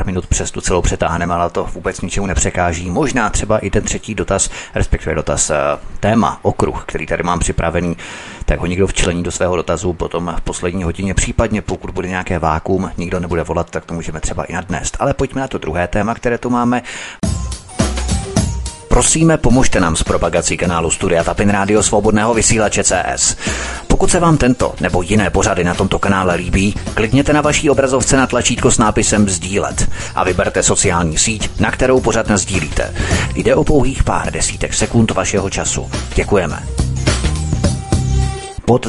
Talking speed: 165 wpm